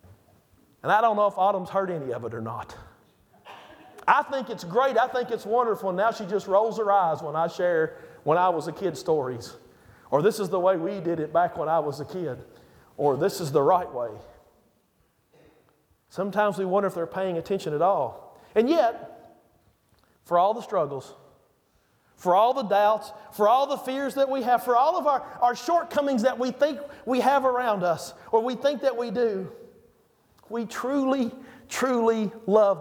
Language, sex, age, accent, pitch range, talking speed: English, male, 40-59, American, 195-260 Hz, 190 wpm